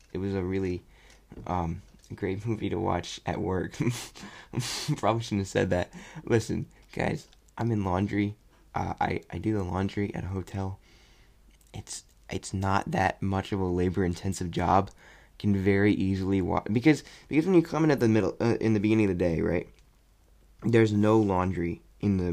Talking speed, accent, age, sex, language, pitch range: 175 wpm, American, 20-39, male, English, 90-105 Hz